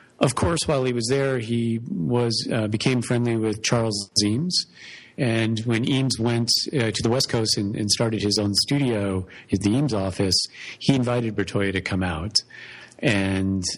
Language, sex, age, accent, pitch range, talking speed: English, male, 40-59, American, 100-125 Hz, 175 wpm